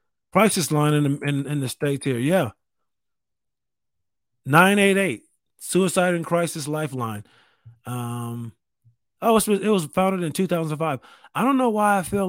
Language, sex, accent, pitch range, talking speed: English, male, American, 110-160 Hz, 125 wpm